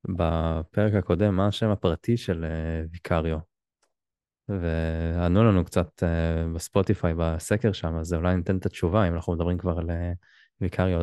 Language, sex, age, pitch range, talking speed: Hebrew, male, 20-39, 85-100 Hz, 135 wpm